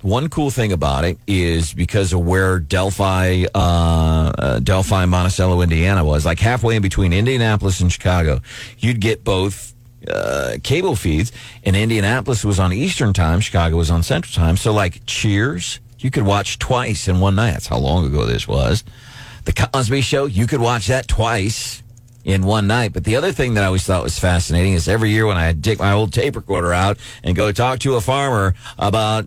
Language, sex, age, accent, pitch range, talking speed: English, male, 40-59, American, 90-120 Hz, 195 wpm